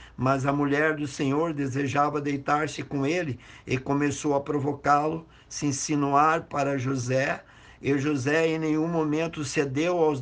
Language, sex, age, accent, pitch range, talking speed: Portuguese, male, 50-69, Brazilian, 140-165 Hz, 140 wpm